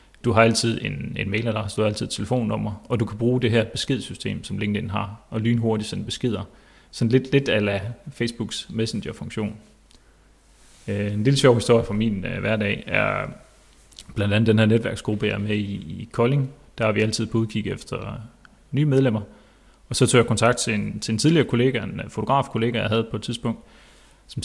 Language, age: Danish, 30-49